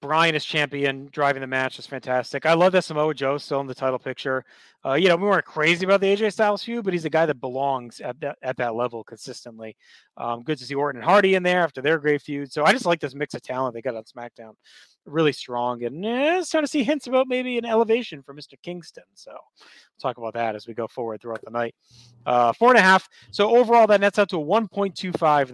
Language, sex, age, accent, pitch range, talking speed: English, male, 30-49, American, 125-180 Hz, 250 wpm